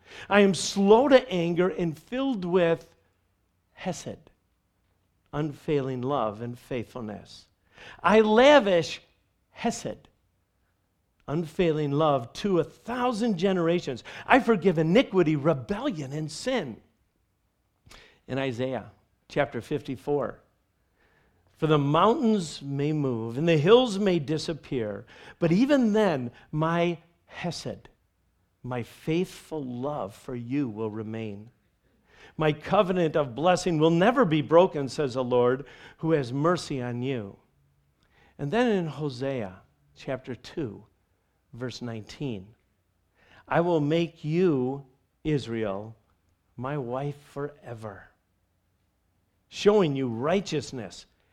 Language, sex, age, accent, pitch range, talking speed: English, male, 50-69, American, 105-170 Hz, 105 wpm